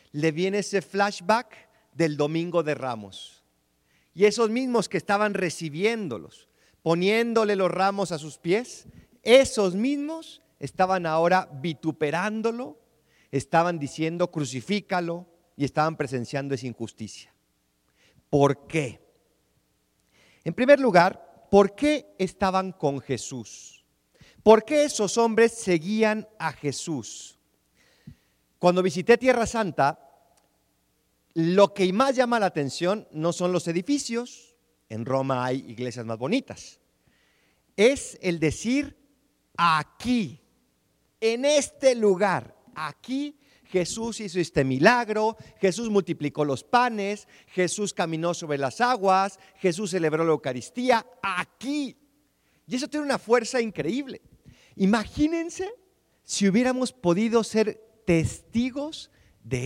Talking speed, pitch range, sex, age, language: 110 wpm, 145-230 Hz, male, 40-59, Spanish